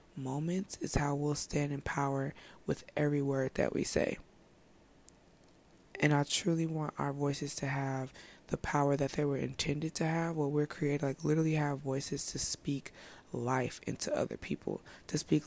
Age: 20-39